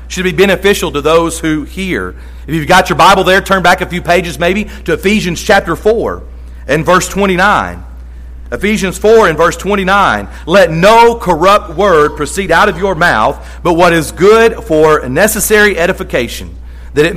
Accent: American